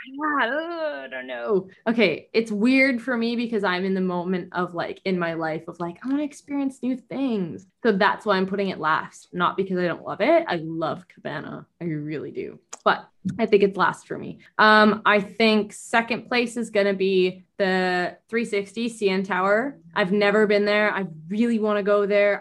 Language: English